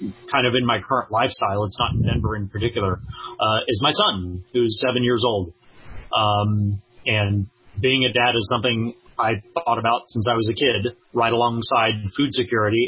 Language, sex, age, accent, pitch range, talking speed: English, male, 30-49, American, 110-135 Hz, 175 wpm